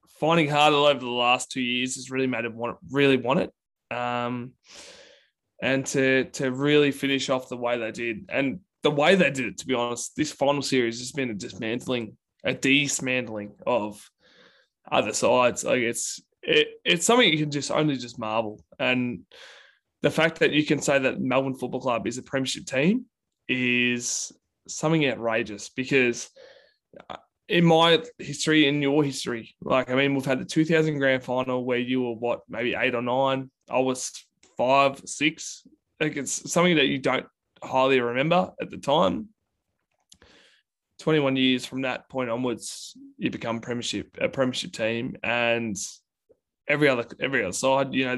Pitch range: 120-150 Hz